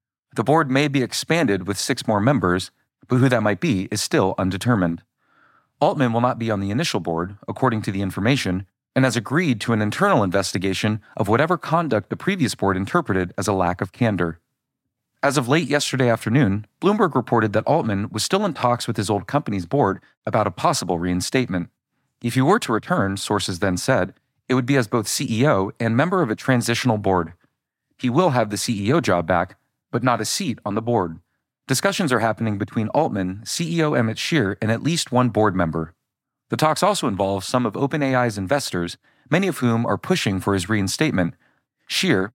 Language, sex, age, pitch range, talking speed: English, male, 40-59, 100-130 Hz, 190 wpm